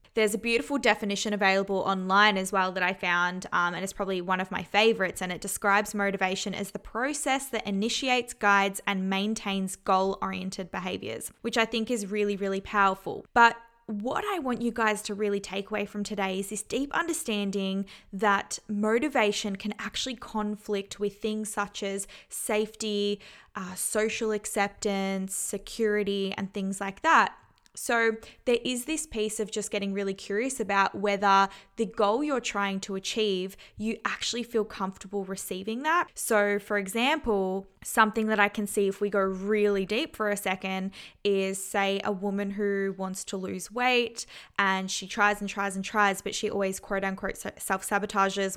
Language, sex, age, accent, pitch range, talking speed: English, female, 20-39, Australian, 195-220 Hz, 170 wpm